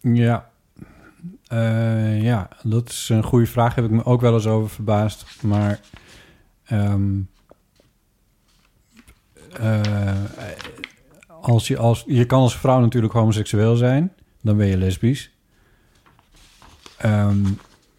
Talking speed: 115 wpm